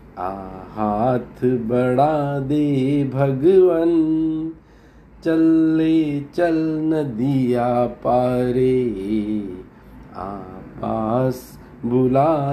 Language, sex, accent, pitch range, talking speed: Hindi, male, native, 125-160 Hz, 55 wpm